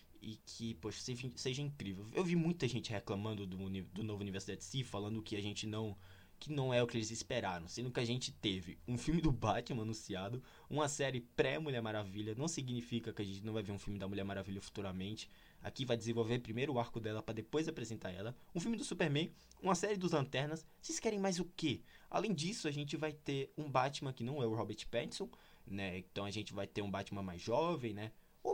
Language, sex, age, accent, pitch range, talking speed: Portuguese, male, 20-39, Brazilian, 100-135 Hz, 225 wpm